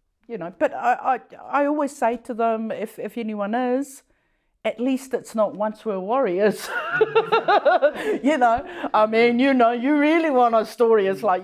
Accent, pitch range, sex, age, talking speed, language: British, 175-255 Hz, female, 50-69, 180 wpm, English